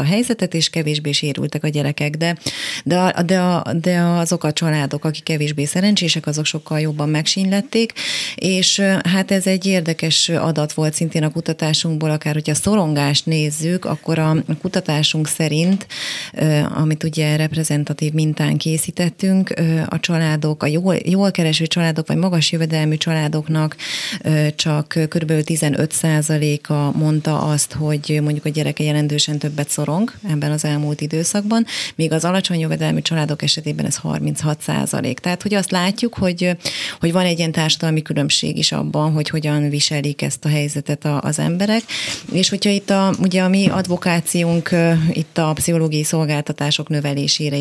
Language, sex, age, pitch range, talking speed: Hungarian, female, 30-49, 150-170 Hz, 145 wpm